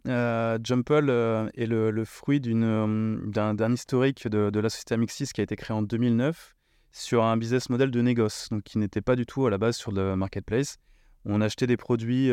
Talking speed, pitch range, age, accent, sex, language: 215 wpm, 105-120 Hz, 20-39, French, male, French